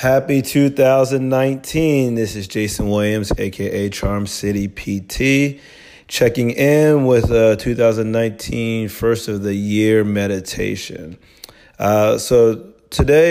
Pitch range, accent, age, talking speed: 105-125 Hz, American, 30-49, 100 wpm